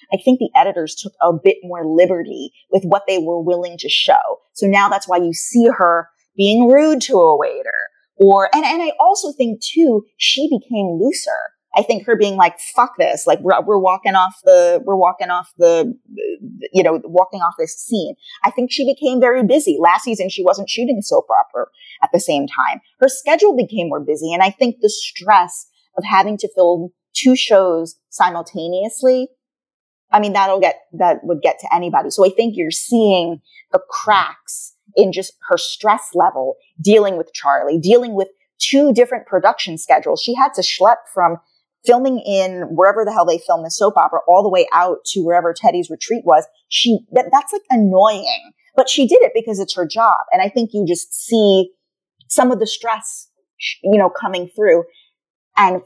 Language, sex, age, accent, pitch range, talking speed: English, female, 30-49, American, 180-265 Hz, 190 wpm